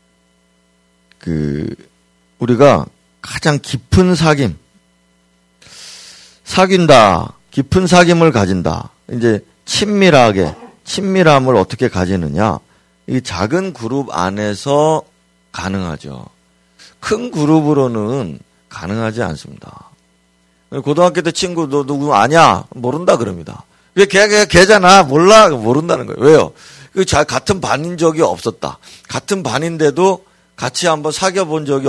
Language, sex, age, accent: Korean, male, 40-59, native